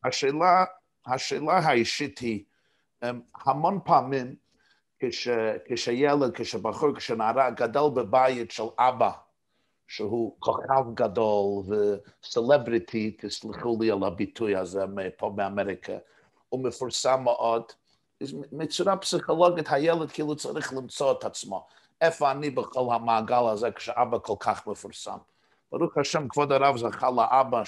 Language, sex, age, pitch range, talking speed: Hebrew, male, 50-69, 115-155 Hz, 110 wpm